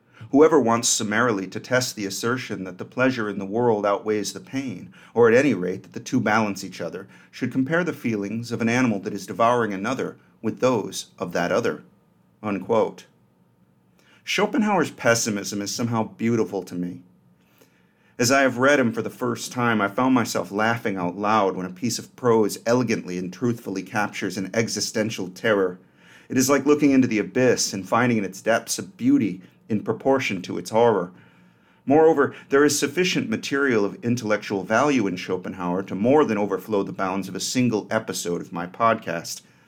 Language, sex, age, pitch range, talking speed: English, male, 40-59, 95-130 Hz, 180 wpm